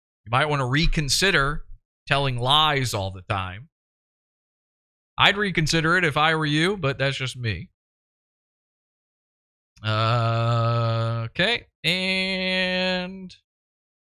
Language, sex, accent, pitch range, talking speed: English, male, American, 110-180 Hz, 105 wpm